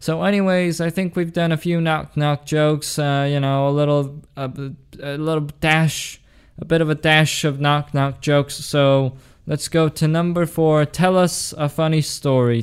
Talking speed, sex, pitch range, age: 190 wpm, male, 130-150 Hz, 20-39